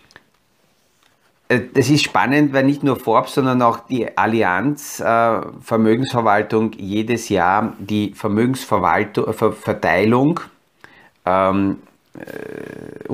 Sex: male